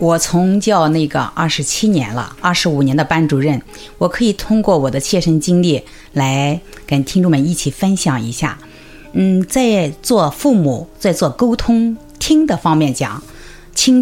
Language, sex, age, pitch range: Chinese, female, 50-69, 150-225 Hz